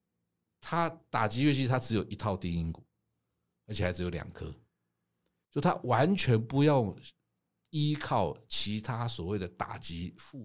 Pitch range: 85-115 Hz